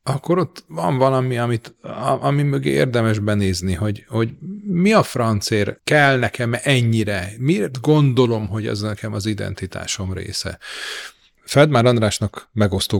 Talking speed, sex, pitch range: 135 wpm, male, 100-135 Hz